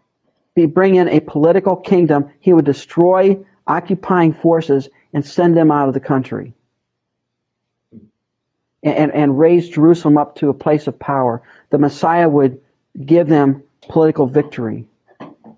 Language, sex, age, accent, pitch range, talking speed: English, male, 50-69, American, 145-190 Hz, 140 wpm